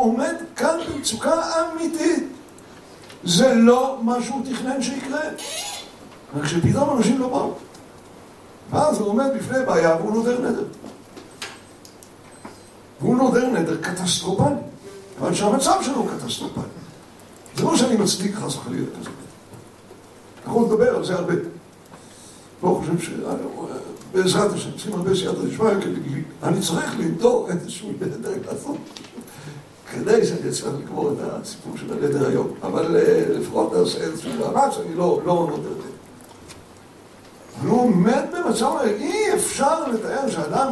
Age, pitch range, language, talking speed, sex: 60-79, 195-300 Hz, Hebrew, 125 wpm, male